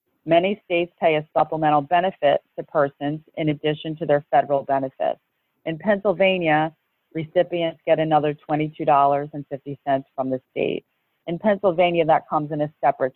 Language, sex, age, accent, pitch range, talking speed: English, female, 40-59, American, 145-170 Hz, 135 wpm